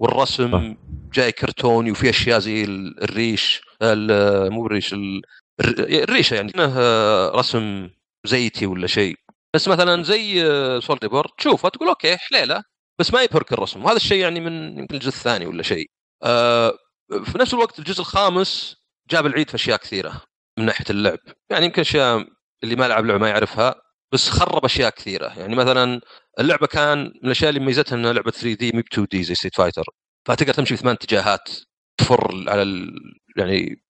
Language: Arabic